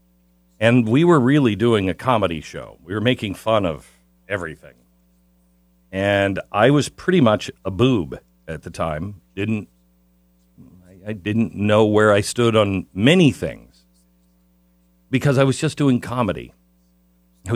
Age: 50-69